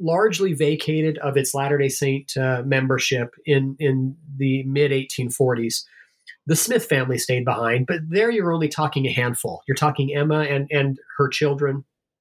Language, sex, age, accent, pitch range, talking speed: English, male, 30-49, American, 135-155 Hz, 150 wpm